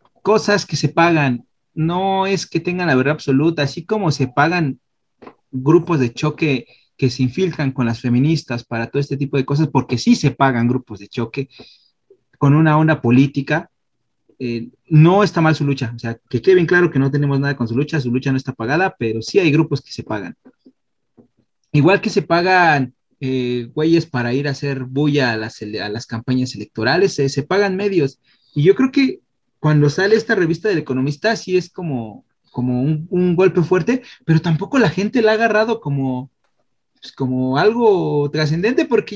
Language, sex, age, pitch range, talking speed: Spanish, male, 30-49, 130-190 Hz, 190 wpm